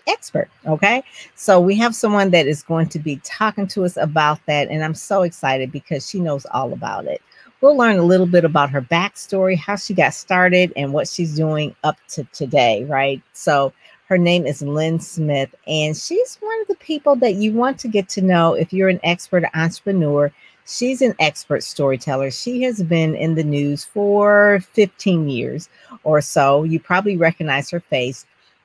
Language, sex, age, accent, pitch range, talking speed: English, female, 50-69, American, 150-200 Hz, 190 wpm